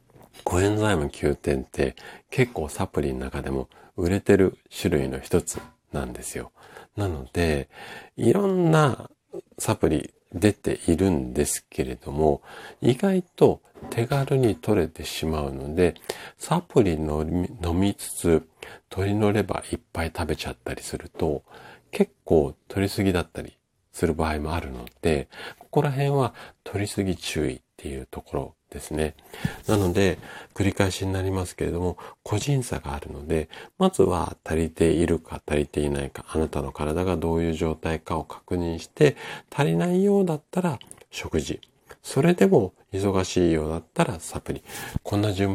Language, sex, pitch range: Japanese, male, 75-100 Hz